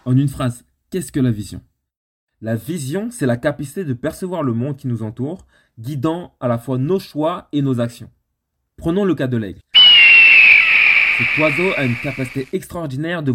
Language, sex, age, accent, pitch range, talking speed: French, male, 20-39, French, 115-150 Hz, 180 wpm